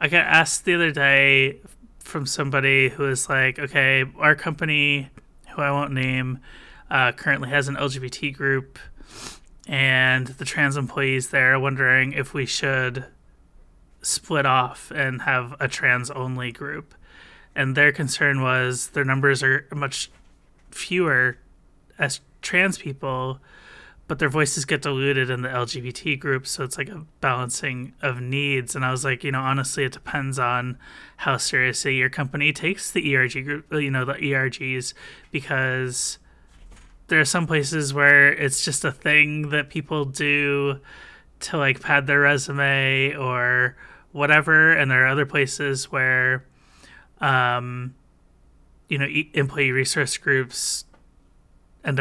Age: 30-49